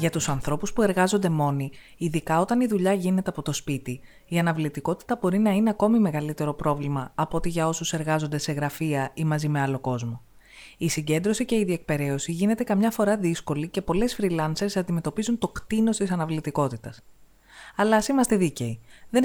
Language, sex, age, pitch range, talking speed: Greek, female, 20-39, 145-205 Hz, 175 wpm